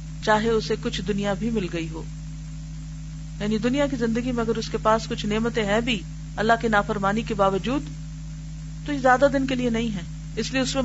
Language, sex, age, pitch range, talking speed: Urdu, female, 40-59, 155-235 Hz, 210 wpm